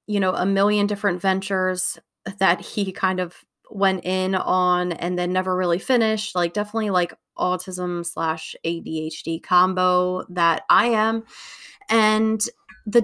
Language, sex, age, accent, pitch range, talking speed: English, female, 20-39, American, 180-215 Hz, 140 wpm